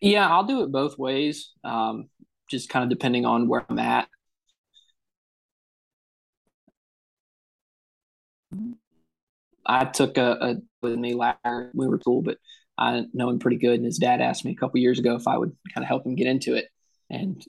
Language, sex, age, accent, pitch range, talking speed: English, male, 20-39, American, 120-140 Hz, 180 wpm